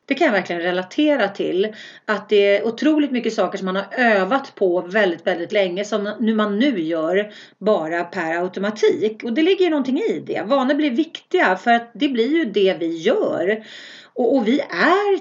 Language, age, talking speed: Swedish, 40-59, 195 wpm